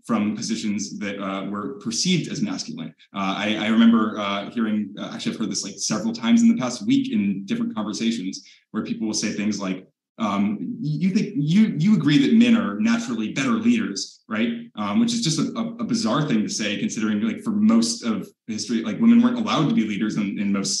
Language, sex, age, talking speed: English, male, 20-39, 215 wpm